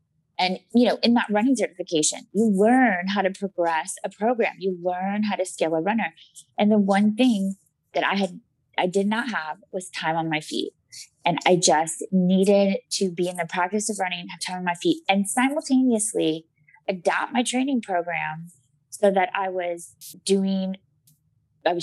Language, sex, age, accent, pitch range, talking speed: English, female, 20-39, American, 170-215 Hz, 180 wpm